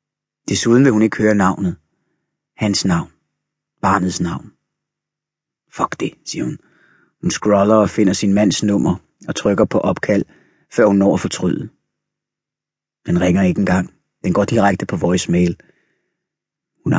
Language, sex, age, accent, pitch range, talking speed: Danish, male, 30-49, native, 95-115 Hz, 140 wpm